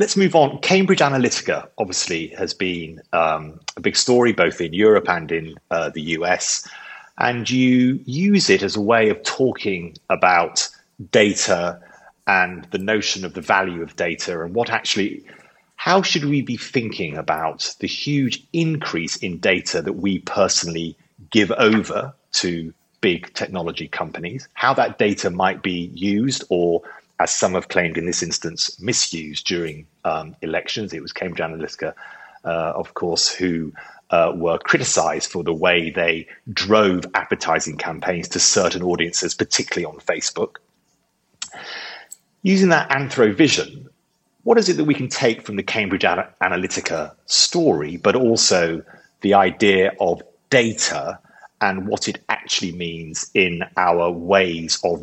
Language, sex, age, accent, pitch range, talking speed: English, male, 30-49, British, 85-125 Hz, 145 wpm